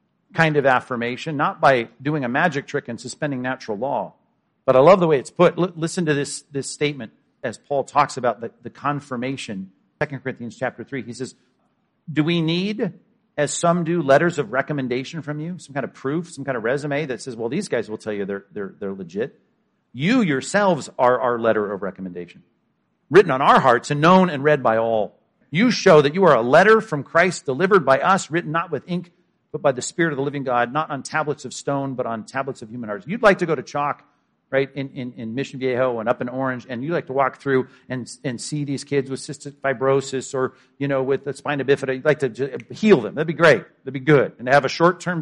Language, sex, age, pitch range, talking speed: English, male, 50-69, 130-155 Hz, 230 wpm